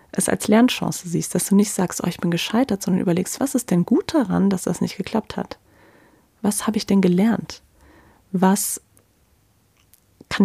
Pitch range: 175-220 Hz